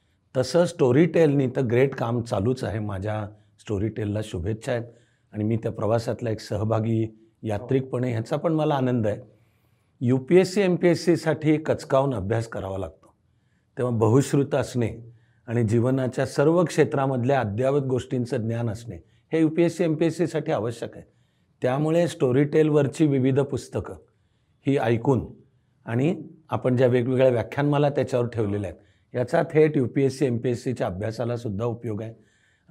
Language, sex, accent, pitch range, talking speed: Marathi, male, native, 115-150 Hz, 145 wpm